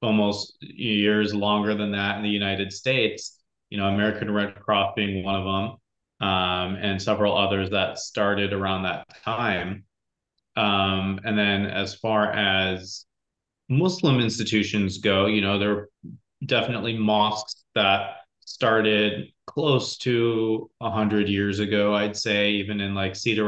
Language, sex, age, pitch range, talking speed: English, male, 30-49, 100-115 Hz, 145 wpm